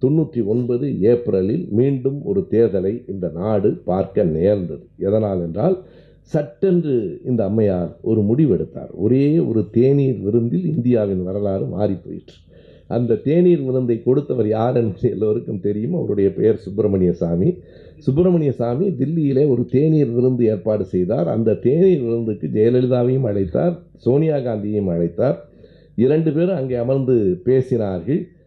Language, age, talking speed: Tamil, 50-69, 120 wpm